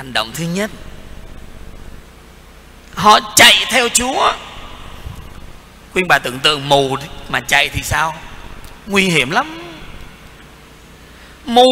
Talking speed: 110 wpm